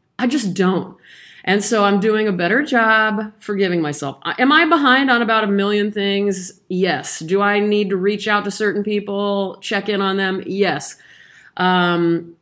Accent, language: American, English